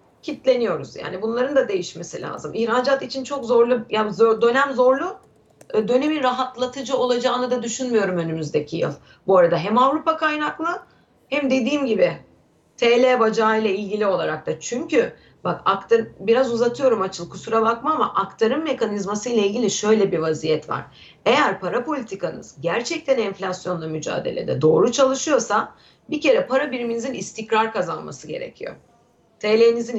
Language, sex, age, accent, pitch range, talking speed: Turkish, female, 30-49, native, 195-260 Hz, 135 wpm